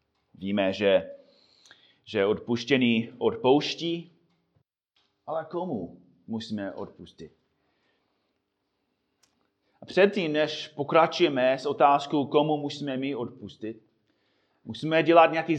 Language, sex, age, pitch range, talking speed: Czech, male, 30-49, 140-195 Hz, 85 wpm